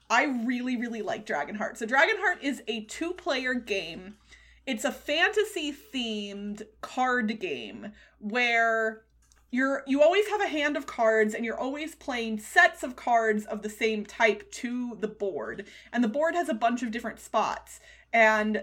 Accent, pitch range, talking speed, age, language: American, 220-280 Hz, 165 wpm, 20-39, English